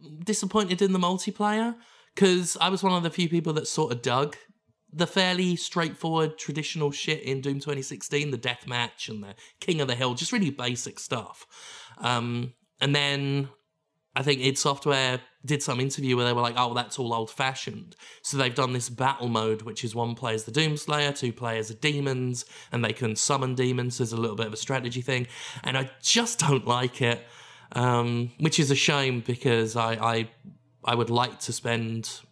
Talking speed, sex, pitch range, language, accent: 200 wpm, male, 120-155 Hz, English, British